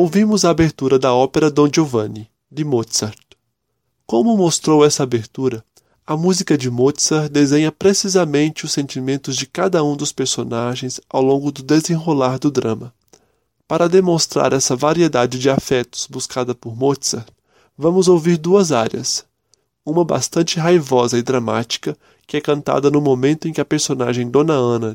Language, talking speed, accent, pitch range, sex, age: Portuguese, 145 wpm, Brazilian, 125-160 Hz, male, 20-39